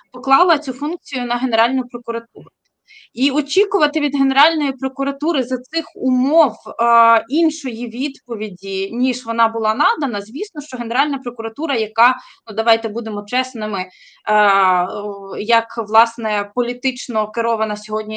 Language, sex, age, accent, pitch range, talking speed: Ukrainian, female, 20-39, native, 225-280 Hz, 120 wpm